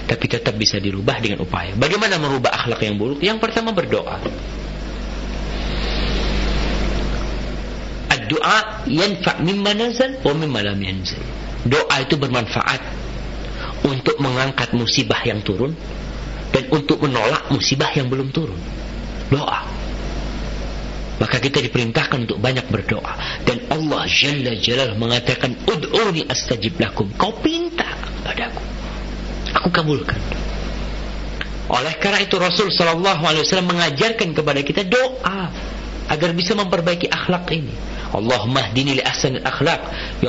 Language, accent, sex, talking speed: Indonesian, native, male, 100 wpm